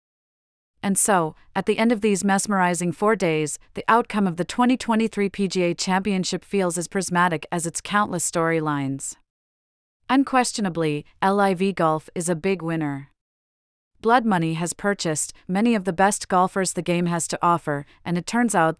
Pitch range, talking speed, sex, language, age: 165-200 Hz, 155 wpm, female, English, 40-59